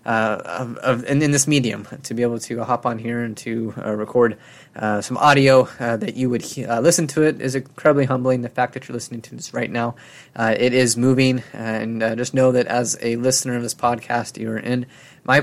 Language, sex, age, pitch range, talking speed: English, male, 20-39, 115-130 Hz, 245 wpm